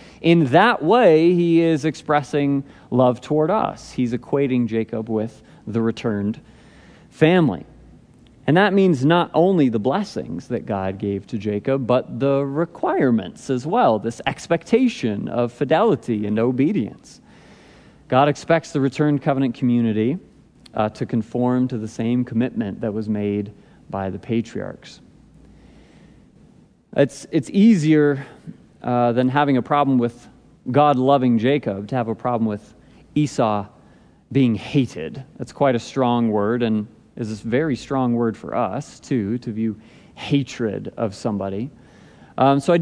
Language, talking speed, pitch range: English, 140 wpm, 115-145 Hz